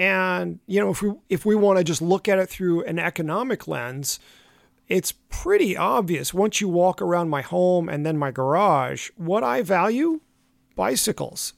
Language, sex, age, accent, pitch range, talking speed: English, male, 40-59, American, 160-200 Hz, 175 wpm